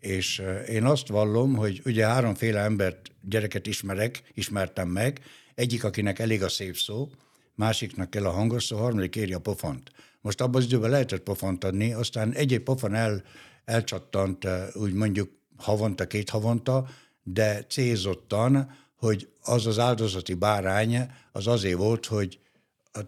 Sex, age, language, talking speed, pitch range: male, 60-79, Hungarian, 145 wpm, 95-115 Hz